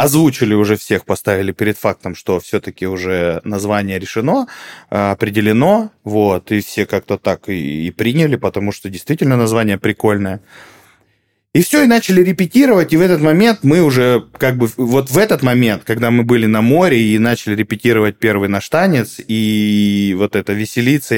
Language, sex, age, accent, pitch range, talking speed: Russian, male, 20-39, native, 100-120 Hz, 160 wpm